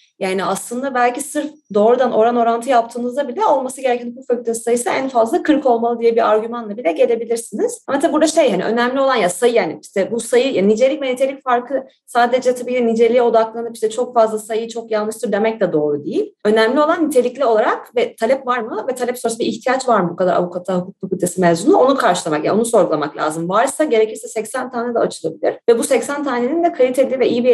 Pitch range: 205-255 Hz